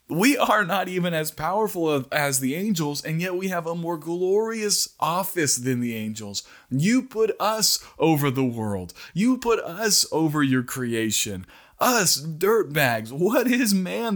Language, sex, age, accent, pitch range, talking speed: English, male, 20-39, American, 140-205 Hz, 155 wpm